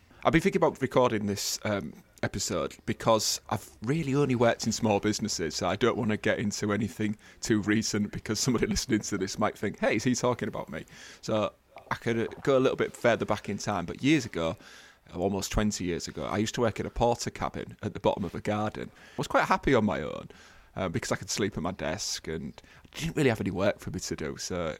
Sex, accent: male, British